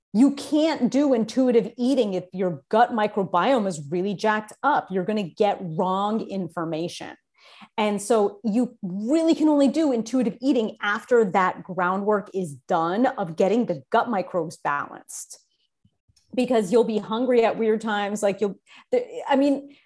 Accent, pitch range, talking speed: American, 175-235 Hz, 150 wpm